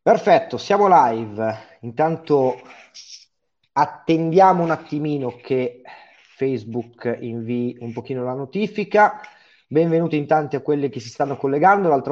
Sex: male